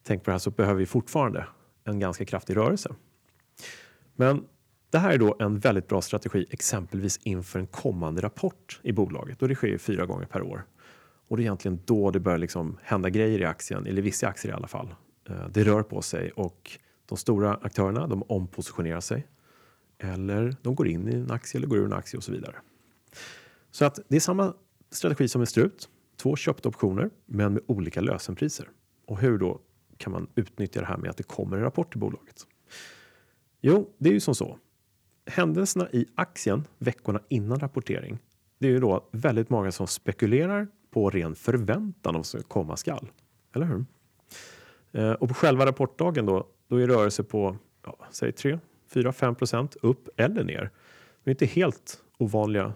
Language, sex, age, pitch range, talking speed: Swedish, male, 30-49, 95-130 Hz, 190 wpm